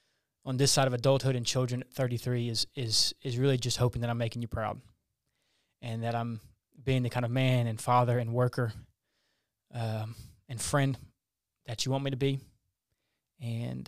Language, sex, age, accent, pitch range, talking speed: English, male, 20-39, American, 110-130 Hz, 180 wpm